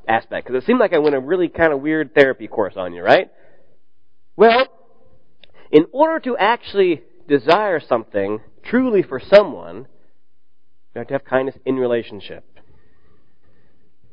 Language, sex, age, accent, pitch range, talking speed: English, male, 30-49, American, 120-170 Hz, 145 wpm